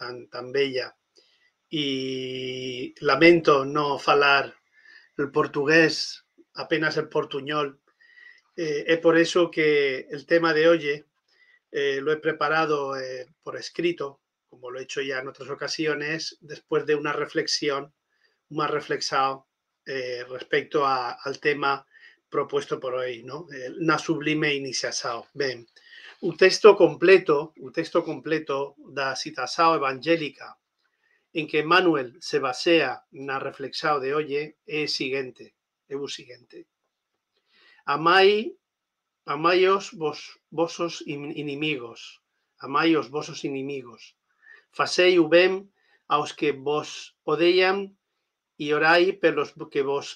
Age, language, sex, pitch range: 40-59, Portuguese, male, 140-195 Hz